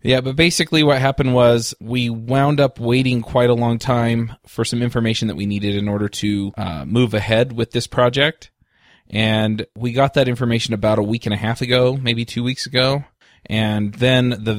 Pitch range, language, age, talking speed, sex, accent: 105-120 Hz, English, 20-39, 200 wpm, male, American